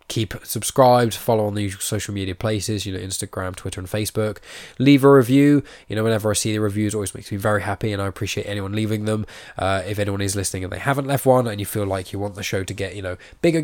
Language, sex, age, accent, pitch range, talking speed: English, male, 10-29, British, 95-115 Hz, 260 wpm